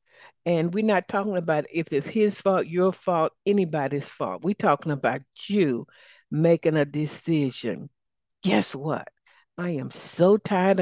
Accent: American